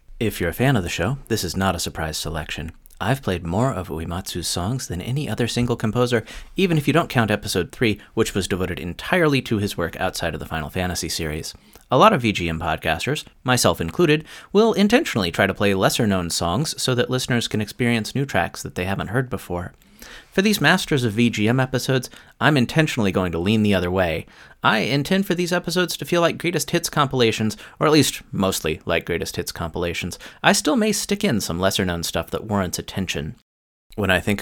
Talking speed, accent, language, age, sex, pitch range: 205 wpm, American, English, 30-49, male, 90-135 Hz